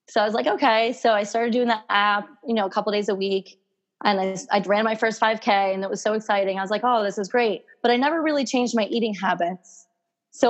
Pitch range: 190-240 Hz